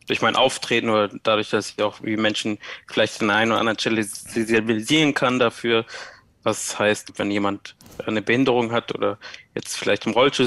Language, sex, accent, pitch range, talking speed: German, male, German, 105-120 Hz, 170 wpm